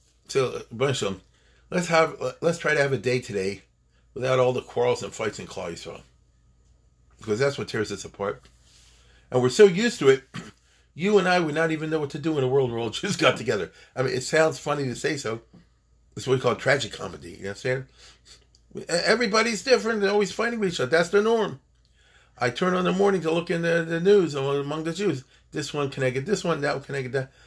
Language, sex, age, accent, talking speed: English, male, 40-59, American, 235 wpm